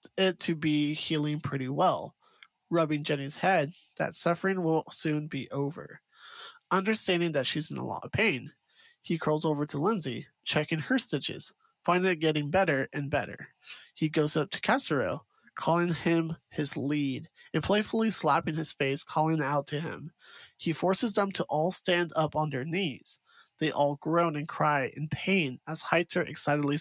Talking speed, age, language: 170 wpm, 20-39, English